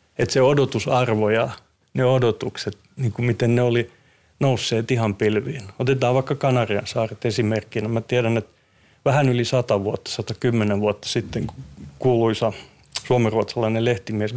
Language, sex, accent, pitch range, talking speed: Finnish, male, native, 110-130 Hz, 135 wpm